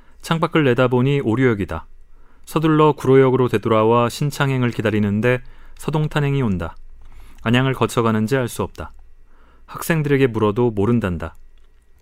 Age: 30-49